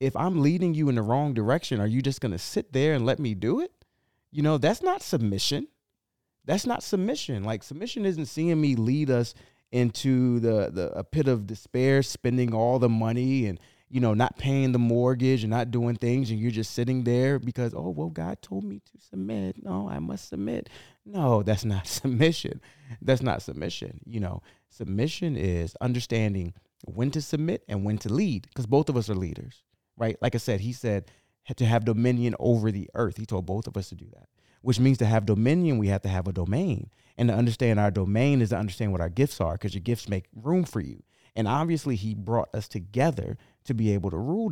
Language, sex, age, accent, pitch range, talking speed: English, male, 20-39, American, 105-135 Hz, 215 wpm